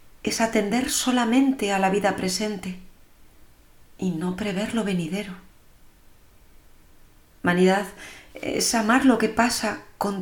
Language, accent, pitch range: Spanish, Spanish, 160-215 Hz